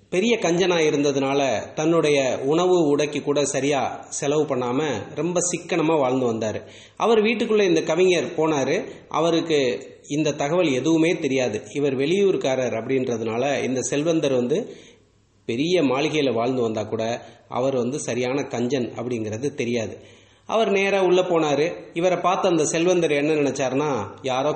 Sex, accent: male, Indian